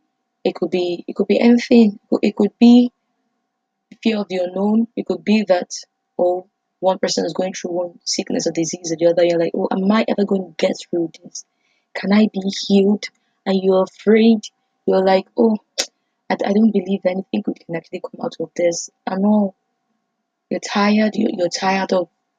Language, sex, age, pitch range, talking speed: English, female, 20-39, 185-240 Hz, 190 wpm